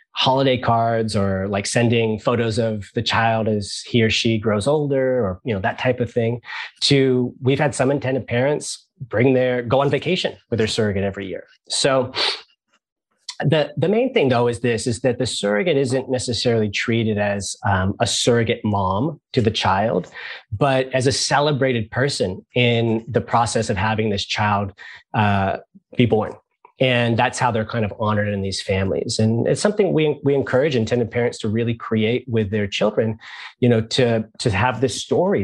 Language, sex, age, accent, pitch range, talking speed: English, male, 30-49, American, 110-130 Hz, 180 wpm